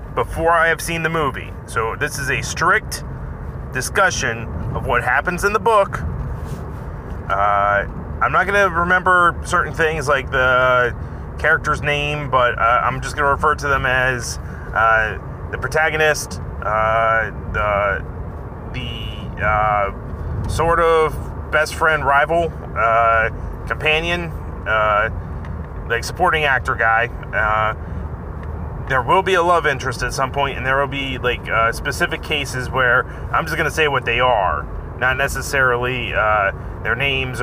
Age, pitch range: 30-49, 100-145 Hz